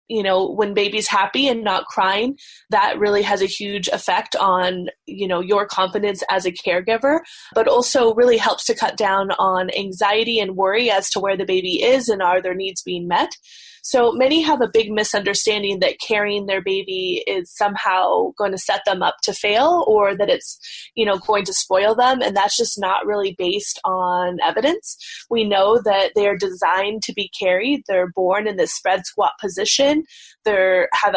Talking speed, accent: 190 wpm, American